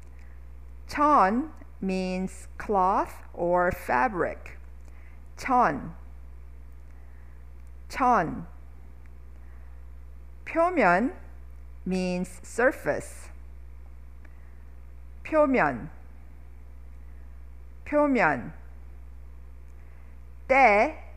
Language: English